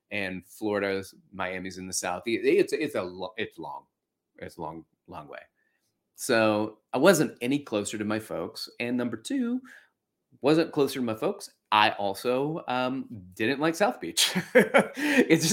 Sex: male